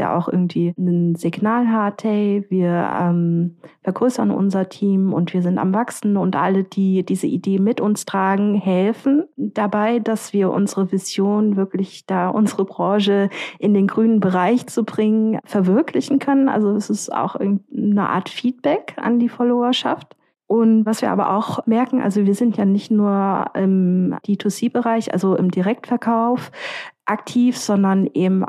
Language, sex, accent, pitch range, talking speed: German, female, German, 190-235 Hz, 150 wpm